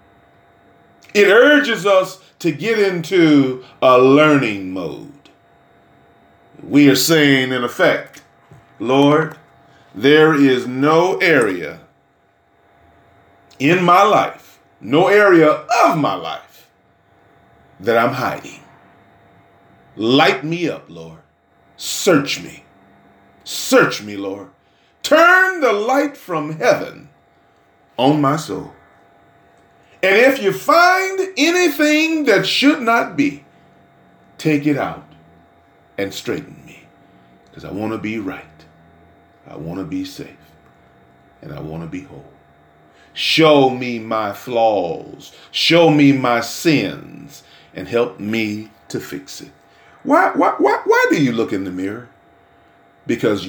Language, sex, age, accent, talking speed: English, male, 40-59, American, 115 wpm